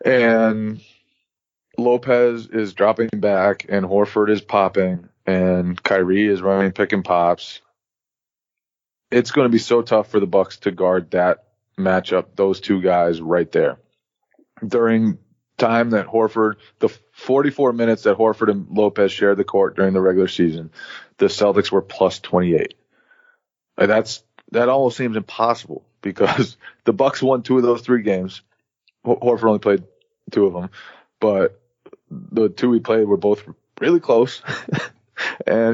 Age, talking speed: 30-49, 145 wpm